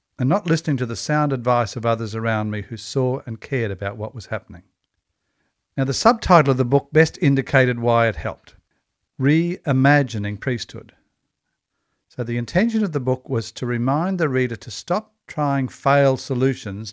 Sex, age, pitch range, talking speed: male, 50-69, 115-145 Hz, 170 wpm